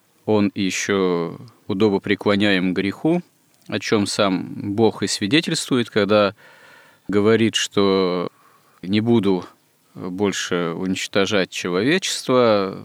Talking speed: 90 wpm